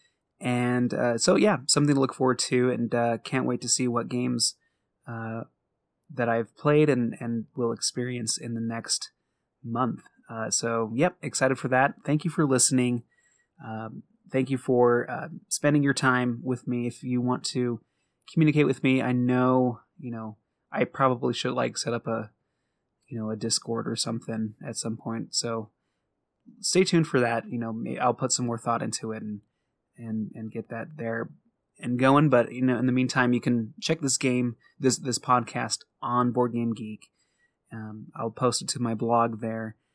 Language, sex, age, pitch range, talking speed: English, male, 20-39, 115-130 Hz, 185 wpm